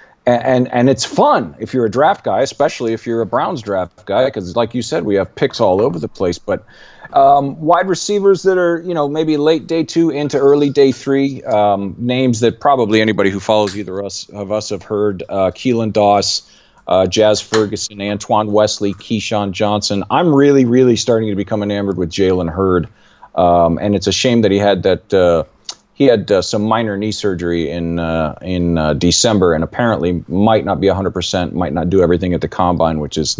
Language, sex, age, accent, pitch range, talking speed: English, male, 40-59, American, 95-125 Hz, 205 wpm